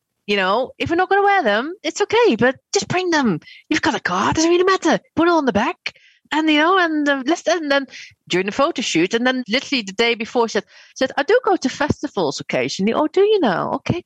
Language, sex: English, female